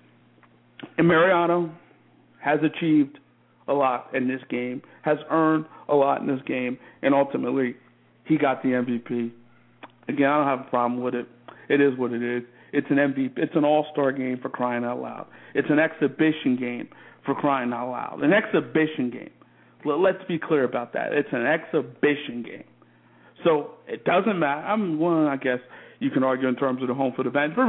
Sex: male